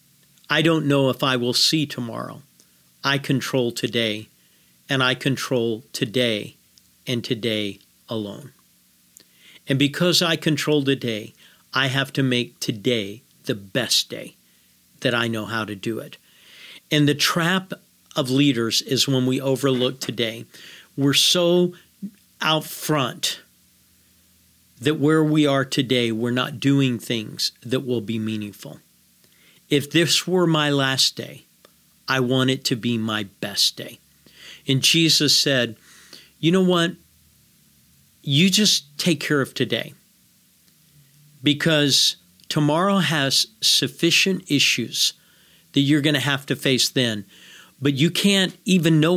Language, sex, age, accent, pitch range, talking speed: English, male, 50-69, American, 120-155 Hz, 135 wpm